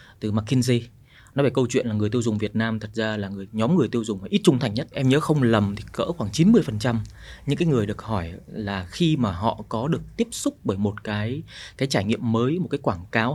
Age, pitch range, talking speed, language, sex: 20-39, 110-140 Hz, 250 wpm, Vietnamese, male